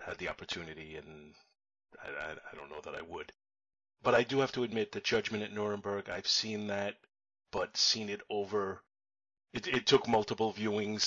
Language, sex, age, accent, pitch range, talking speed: English, male, 30-49, American, 95-105 Hz, 185 wpm